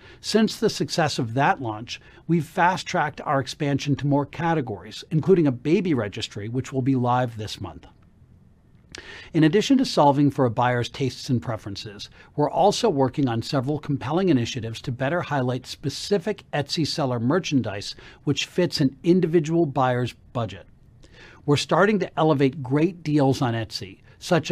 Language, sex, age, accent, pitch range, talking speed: English, male, 60-79, American, 120-160 Hz, 155 wpm